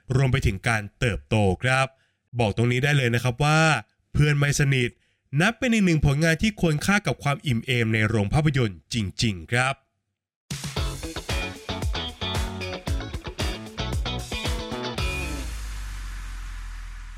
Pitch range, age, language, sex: 110-160 Hz, 20-39, Thai, male